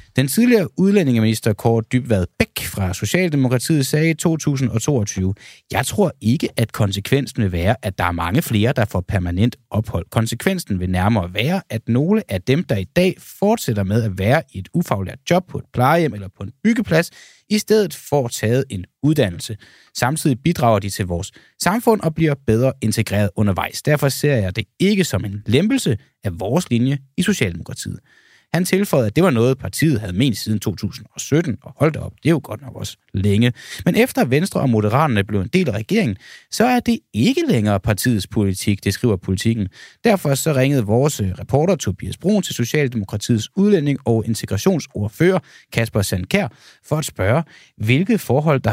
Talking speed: 175 wpm